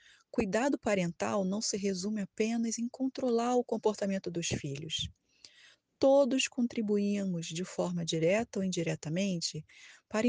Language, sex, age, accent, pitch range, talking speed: Portuguese, female, 20-39, Brazilian, 185-245 Hz, 115 wpm